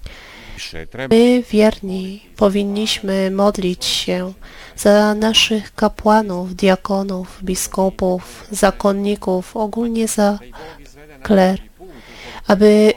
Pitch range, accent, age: 180-215 Hz, native, 30-49